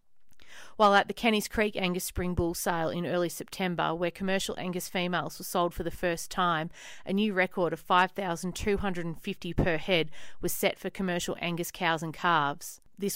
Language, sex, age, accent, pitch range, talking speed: English, female, 40-59, Australian, 160-185 Hz, 175 wpm